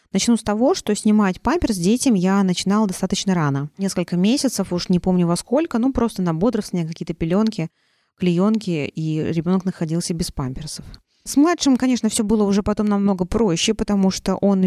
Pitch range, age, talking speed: 170-220 Hz, 20-39, 170 wpm